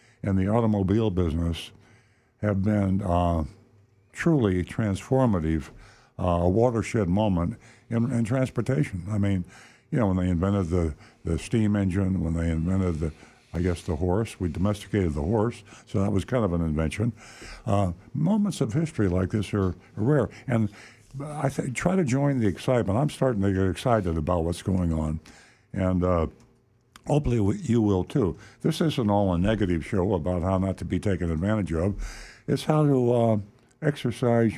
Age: 60-79